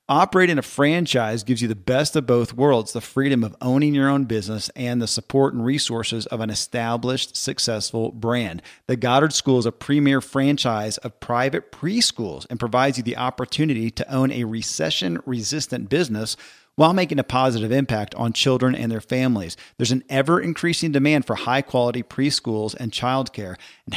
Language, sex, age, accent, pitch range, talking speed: English, male, 40-59, American, 115-145 Hz, 170 wpm